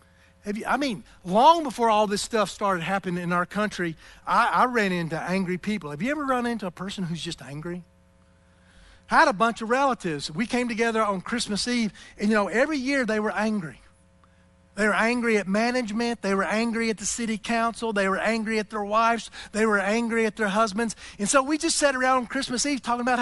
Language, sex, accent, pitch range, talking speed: English, male, American, 175-255 Hz, 215 wpm